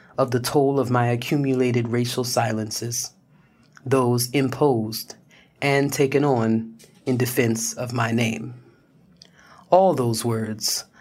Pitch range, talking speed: 120-150 Hz, 115 wpm